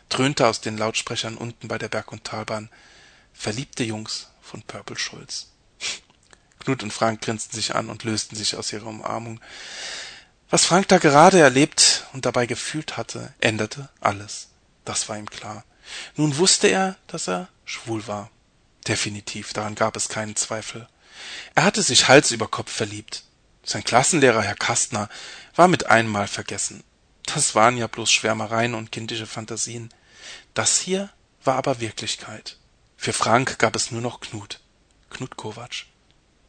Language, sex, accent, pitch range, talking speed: German, male, German, 110-140 Hz, 150 wpm